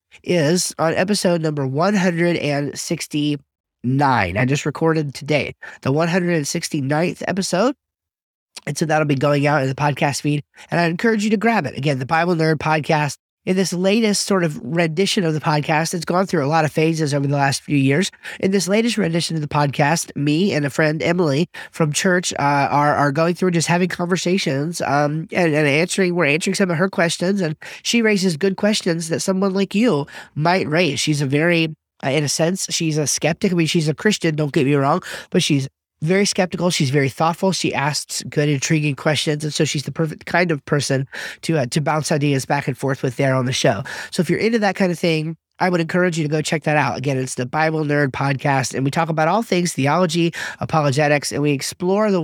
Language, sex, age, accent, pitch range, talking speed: English, male, 30-49, American, 145-180 Hz, 210 wpm